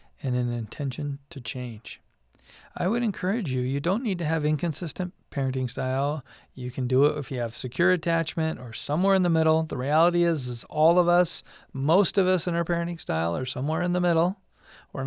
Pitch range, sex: 140-180 Hz, male